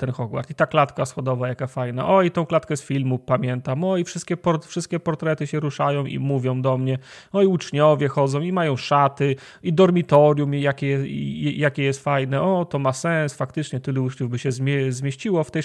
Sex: male